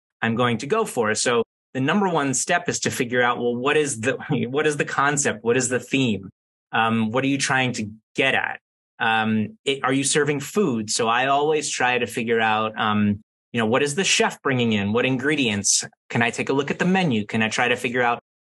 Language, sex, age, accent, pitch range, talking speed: English, male, 30-49, American, 120-150 Hz, 235 wpm